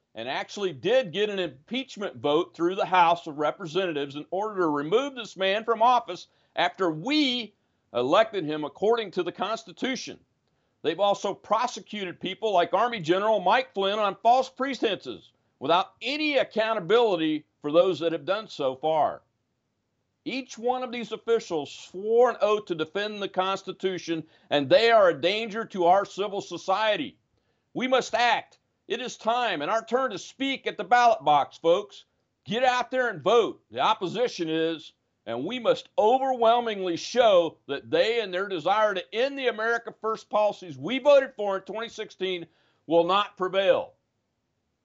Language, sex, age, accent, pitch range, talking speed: English, male, 50-69, American, 165-235 Hz, 160 wpm